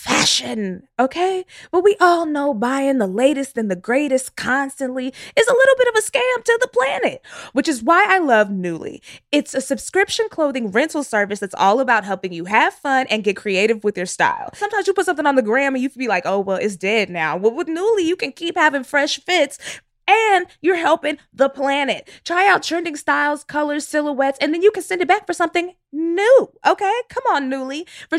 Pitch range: 220-340 Hz